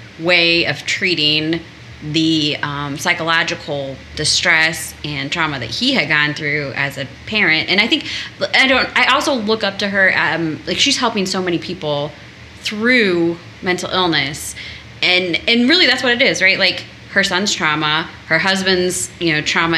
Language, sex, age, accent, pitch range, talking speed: English, female, 20-39, American, 150-185 Hz, 165 wpm